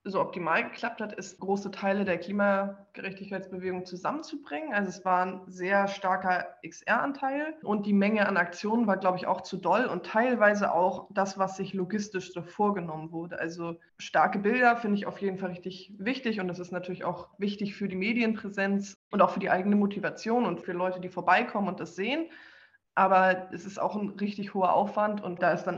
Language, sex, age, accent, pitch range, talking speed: German, female, 20-39, German, 185-205 Hz, 195 wpm